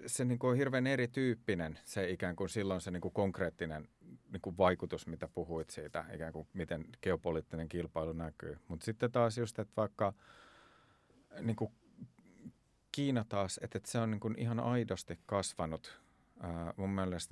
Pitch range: 85-105 Hz